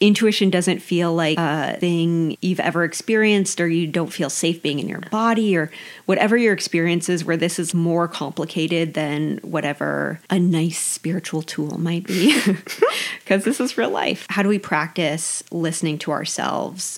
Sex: female